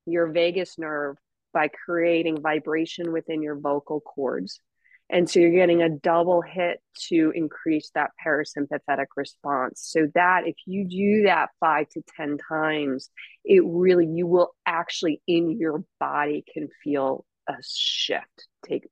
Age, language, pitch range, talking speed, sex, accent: 30-49, English, 155-180 Hz, 145 wpm, female, American